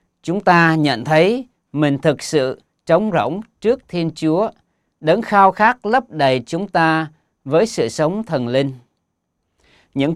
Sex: male